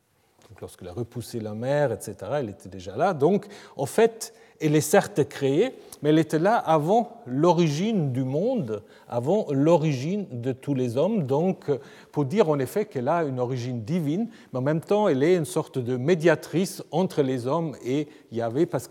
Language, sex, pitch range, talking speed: French, male, 120-170 Hz, 180 wpm